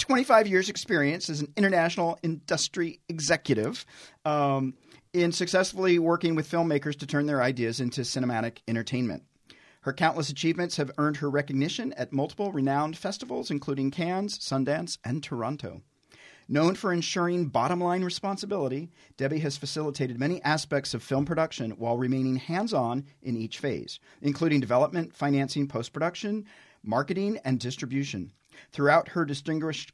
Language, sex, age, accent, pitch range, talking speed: English, male, 40-59, American, 130-165 Hz, 140 wpm